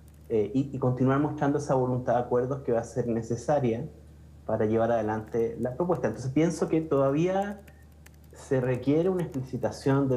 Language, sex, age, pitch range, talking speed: Spanish, male, 30-49, 110-140 Hz, 160 wpm